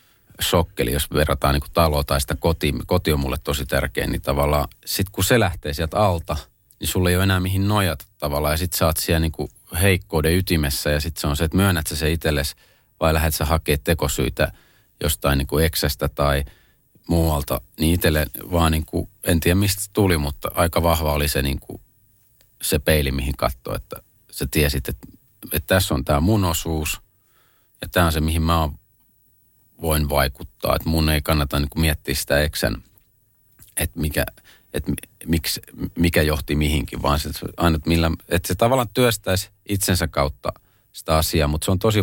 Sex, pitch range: male, 75-95 Hz